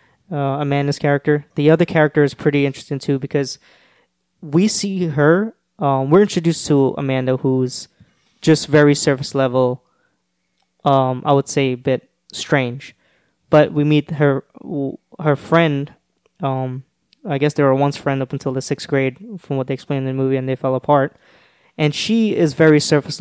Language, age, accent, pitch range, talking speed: English, 20-39, American, 135-150 Hz, 170 wpm